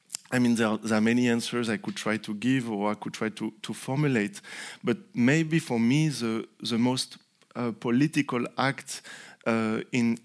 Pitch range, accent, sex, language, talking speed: 115-135 Hz, French, male, English, 185 wpm